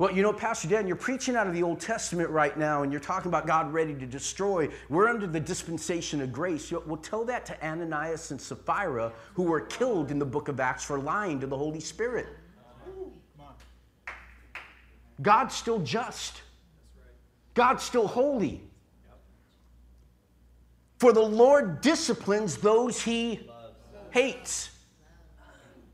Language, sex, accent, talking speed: English, male, American, 145 wpm